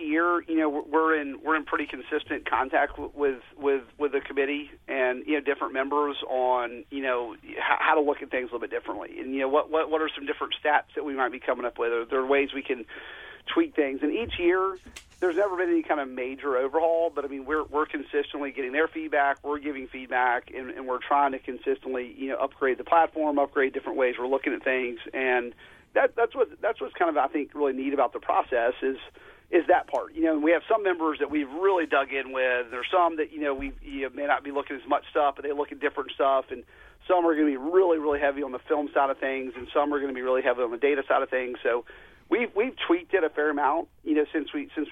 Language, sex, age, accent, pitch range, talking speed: English, male, 40-59, American, 135-160 Hz, 255 wpm